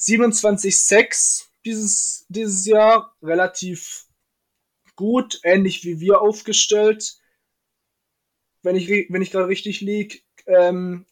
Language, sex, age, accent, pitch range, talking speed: German, male, 20-39, German, 165-205 Hz, 105 wpm